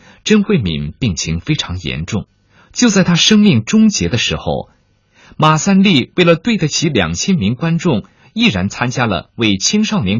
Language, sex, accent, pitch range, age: Chinese, male, native, 95-155 Hz, 50-69